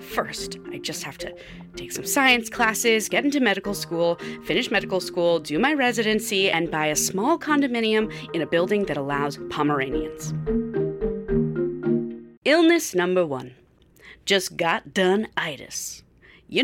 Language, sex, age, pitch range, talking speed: English, female, 30-49, 170-255 Hz, 135 wpm